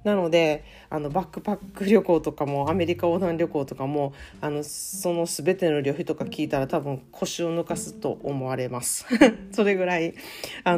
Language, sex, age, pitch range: Japanese, female, 40-59, 150-210 Hz